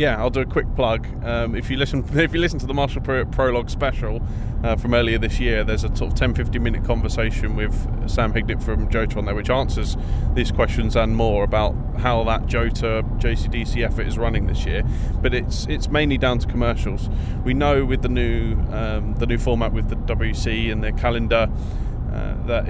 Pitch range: 110-125 Hz